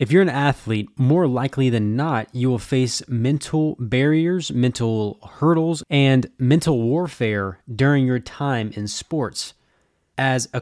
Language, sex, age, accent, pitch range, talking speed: English, male, 20-39, American, 115-145 Hz, 140 wpm